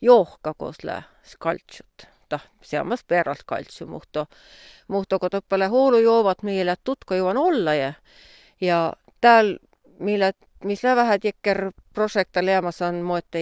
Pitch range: 175-235 Hz